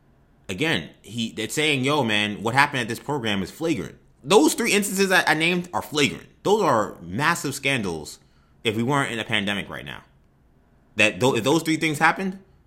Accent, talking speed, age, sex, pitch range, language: American, 195 wpm, 20-39, male, 105-155 Hz, English